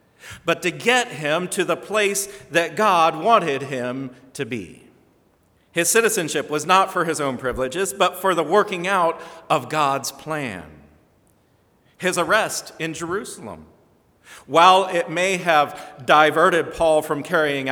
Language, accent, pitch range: English, American, 115-170 Hz